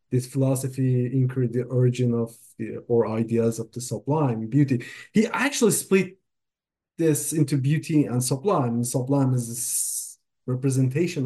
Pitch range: 135-185 Hz